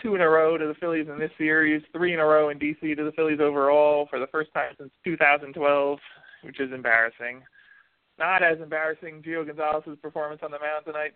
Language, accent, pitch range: English, American, 145-160 Hz